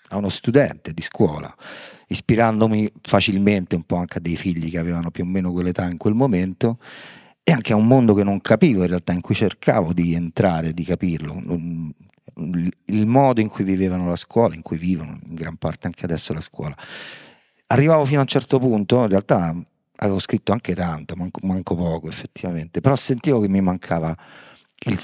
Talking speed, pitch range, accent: 190 wpm, 85-105 Hz, native